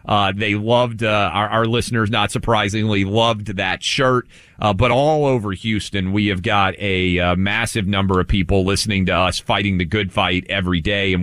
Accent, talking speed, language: American, 190 wpm, English